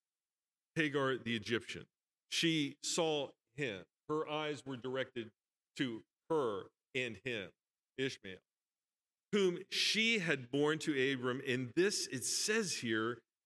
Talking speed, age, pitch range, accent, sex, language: 115 wpm, 40-59, 120-155 Hz, American, male, English